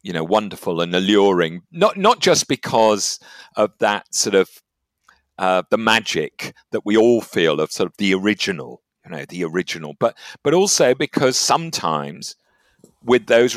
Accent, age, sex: British, 50-69, male